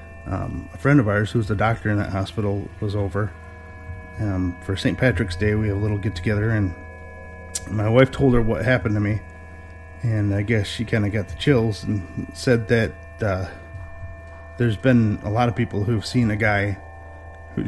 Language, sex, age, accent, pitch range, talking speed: English, male, 30-49, American, 85-115 Hz, 195 wpm